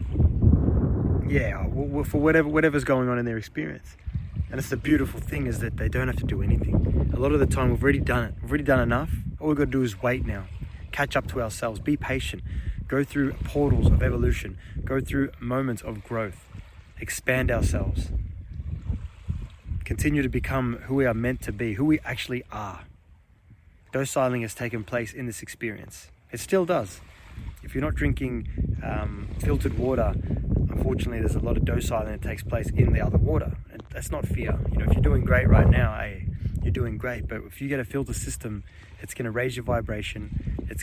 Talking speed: 195 wpm